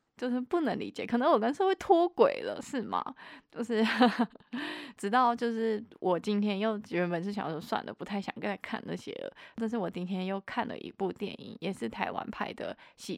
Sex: female